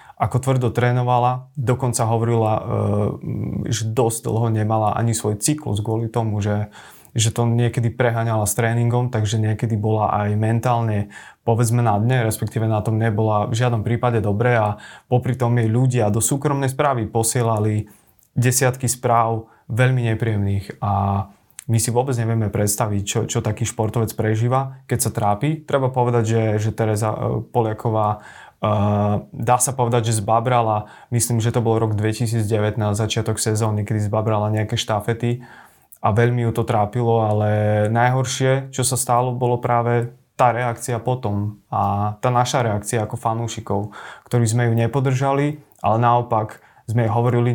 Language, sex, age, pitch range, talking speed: Slovak, male, 30-49, 110-120 Hz, 145 wpm